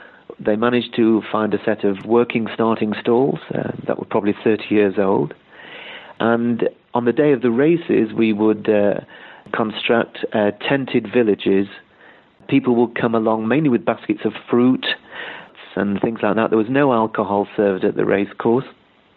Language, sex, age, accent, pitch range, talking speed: English, male, 40-59, British, 105-125 Hz, 165 wpm